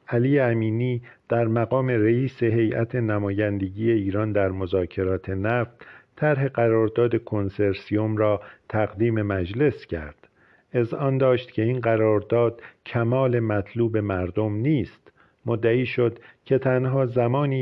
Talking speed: 110 wpm